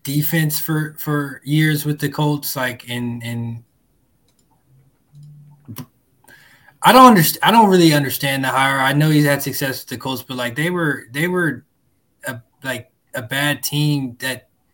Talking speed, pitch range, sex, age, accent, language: 165 wpm, 130-155 Hz, male, 20-39, American, English